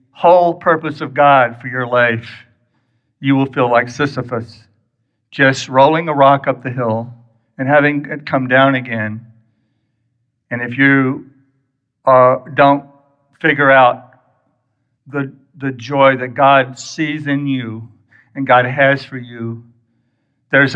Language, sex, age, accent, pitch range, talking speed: English, male, 60-79, American, 125-155 Hz, 135 wpm